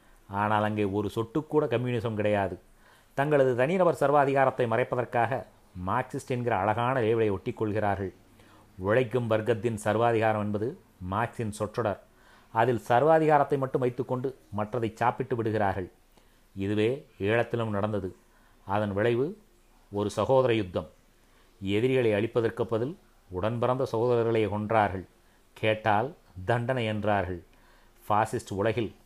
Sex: male